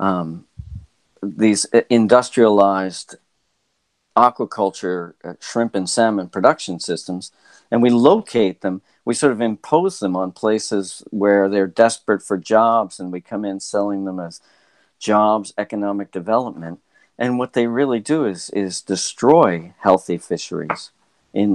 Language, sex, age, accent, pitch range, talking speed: English, male, 50-69, American, 90-115 Hz, 130 wpm